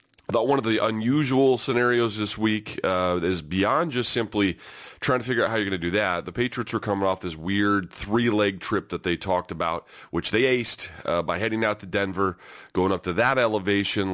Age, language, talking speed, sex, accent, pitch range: 30-49, English, 220 wpm, male, American, 95-120 Hz